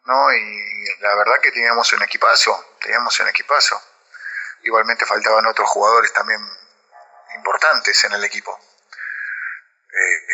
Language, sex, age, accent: Spanish, male, 30-49, Argentinian